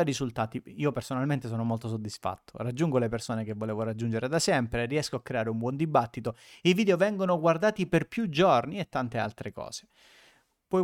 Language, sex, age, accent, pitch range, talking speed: Italian, male, 30-49, native, 120-175 Hz, 175 wpm